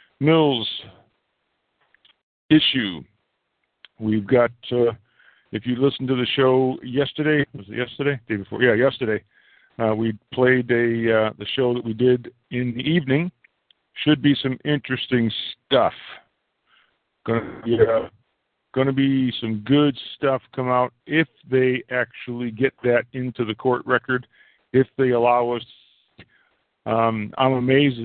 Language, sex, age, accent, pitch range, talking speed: English, male, 50-69, American, 115-130 Hz, 135 wpm